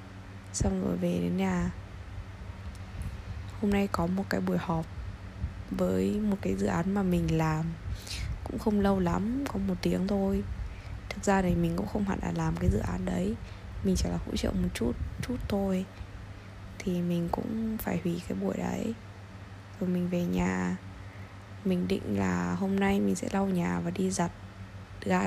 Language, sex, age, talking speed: Vietnamese, female, 10-29, 180 wpm